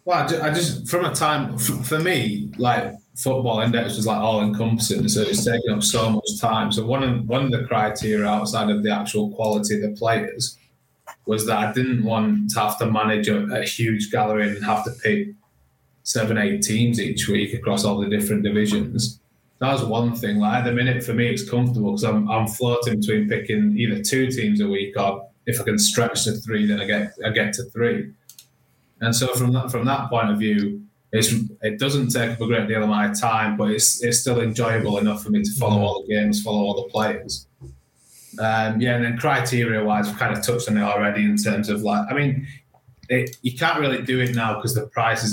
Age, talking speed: 20-39, 220 wpm